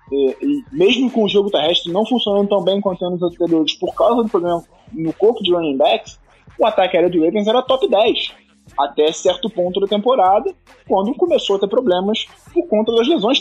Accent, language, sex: Brazilian, Portuguese, male